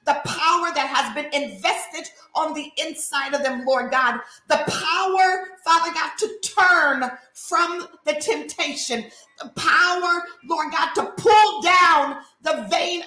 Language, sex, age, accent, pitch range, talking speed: English, female, 40-59, American, 300-370 Hz, 140 wpm